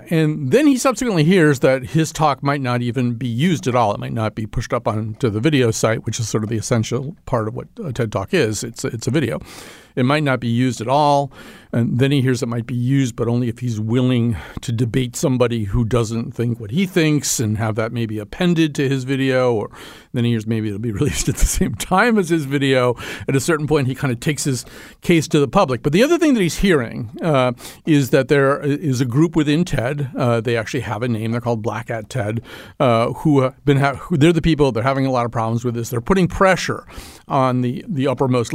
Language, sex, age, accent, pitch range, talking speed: English, male, 50-69, American, 115-150 Hz, 245 wpm